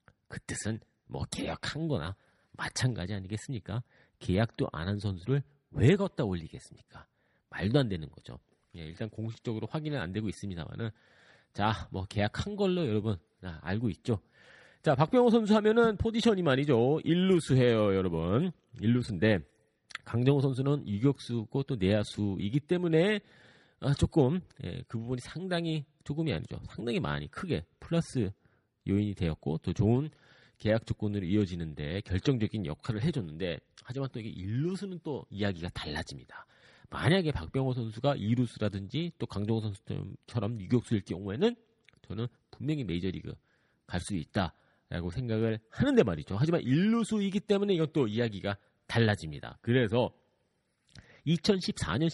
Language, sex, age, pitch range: Korean, male, 40-59, 100-150 Hz